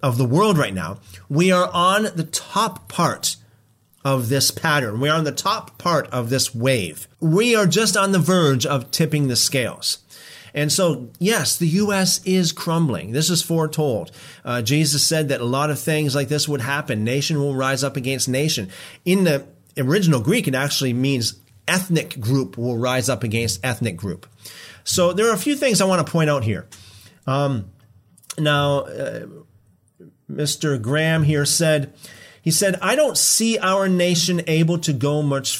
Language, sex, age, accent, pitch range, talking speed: English, male, 40-59, American, 130-180 Hz, 180 wpm